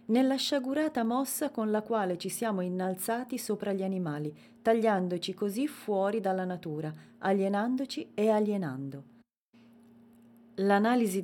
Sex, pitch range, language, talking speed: female, 170-215 Hz, Italian, 110 wpm